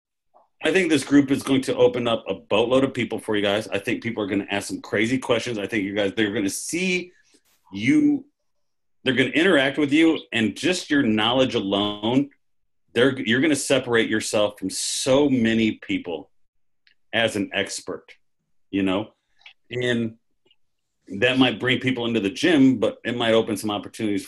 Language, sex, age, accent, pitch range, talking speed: English, male, 40-59, American, 115-150 Hz, 185 wpm